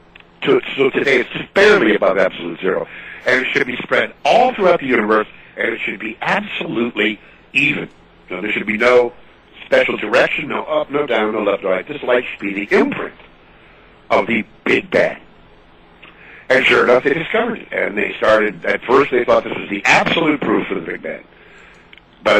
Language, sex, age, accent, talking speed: English, male, 60-79, American, 185 wpm